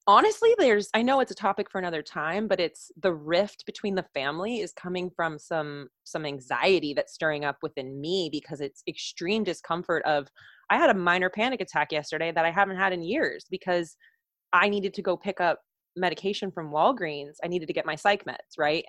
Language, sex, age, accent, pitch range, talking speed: English, female, 20-39, American, 155-200 Hz, 205 wpm